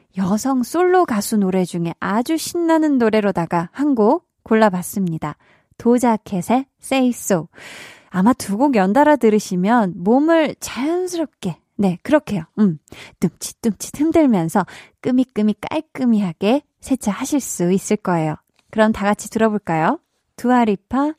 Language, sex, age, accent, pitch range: Korean, female, 20-39, native, 195-265 Hz